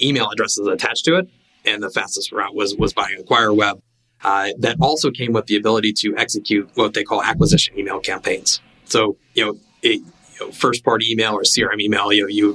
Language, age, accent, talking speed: English, 30-49, American, 205 wpm